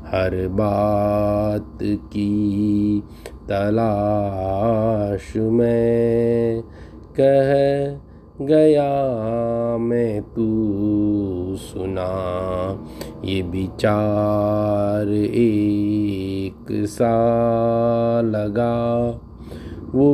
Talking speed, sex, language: 50 wpm, male, Hindi